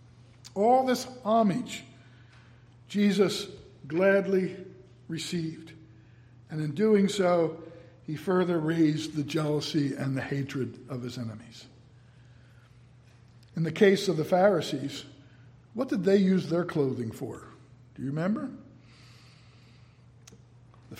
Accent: American